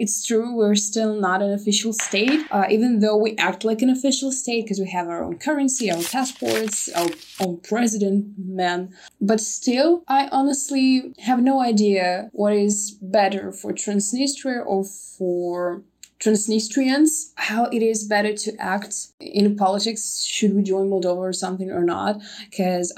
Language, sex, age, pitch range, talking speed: English, female, 20-39, 180-225 Hz, 160 wpm